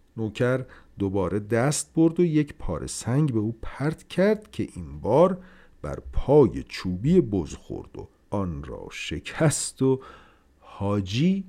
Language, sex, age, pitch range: Persian, male, 50-69, 95-140 Hz